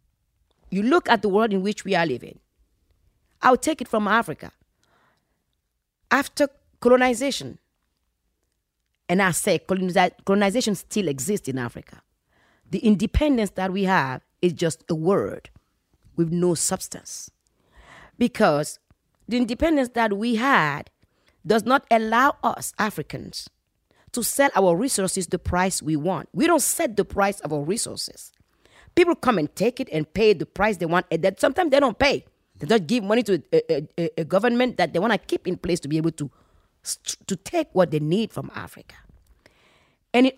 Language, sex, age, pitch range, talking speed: English, female, 40-59, 170-240 Hz, 165 wpm